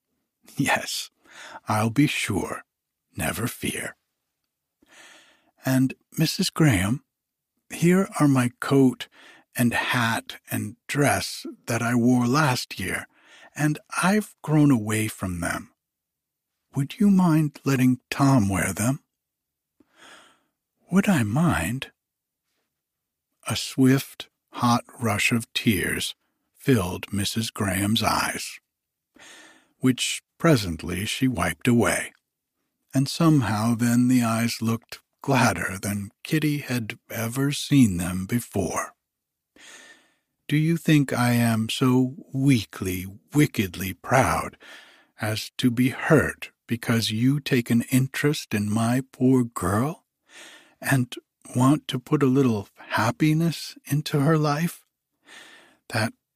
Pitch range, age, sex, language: 115-145 Hz, 60-79, male, English